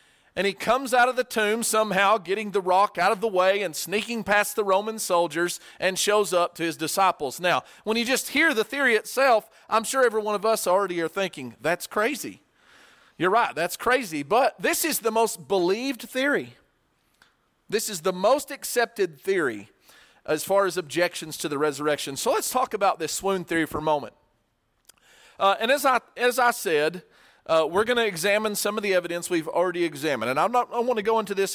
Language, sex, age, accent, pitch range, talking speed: English, male, 40-59, American, 160-220 Hz, 205 wpm